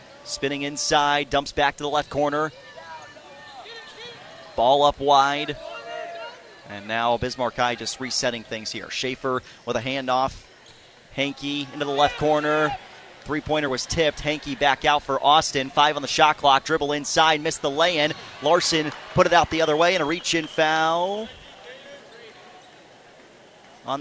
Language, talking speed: English, 145 wpm